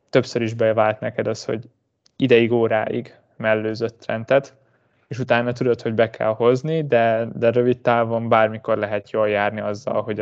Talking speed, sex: 155 wpm, male